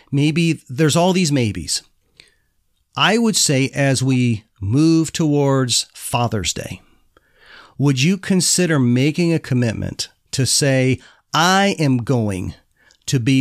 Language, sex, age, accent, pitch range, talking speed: English, male, 40-59, American, 120-155 Hz, 120 wpm